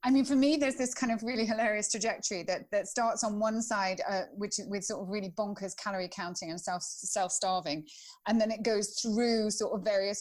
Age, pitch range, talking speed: 30-49, 180-220 Hz, 225 wpm